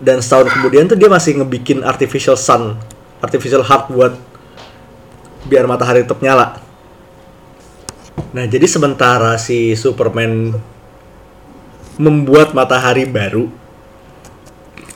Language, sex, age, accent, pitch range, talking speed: Indonesian, male, 20-39, native, 125-155 Hz, 95 wpm